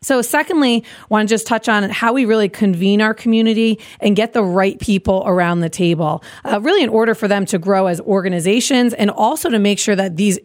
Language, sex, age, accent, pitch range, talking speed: English, female, 30-49, American, 190-225 Hz, 220 wpm